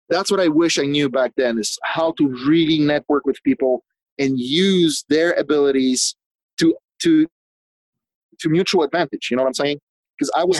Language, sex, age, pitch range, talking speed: English, male, 30-49, 125-155 Hz, 180 wpm